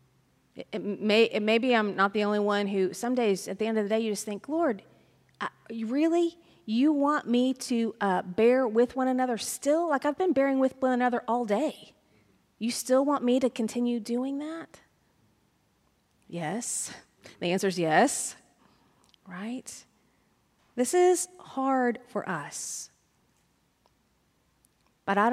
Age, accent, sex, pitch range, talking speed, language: 30-49, American, female, 200-250 Hz, 150 wpm, English